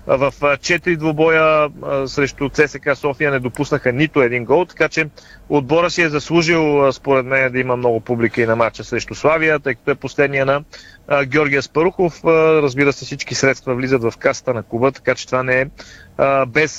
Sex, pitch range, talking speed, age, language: male, 130-155 Hz, 190 wpm, 30-49, Bulgarian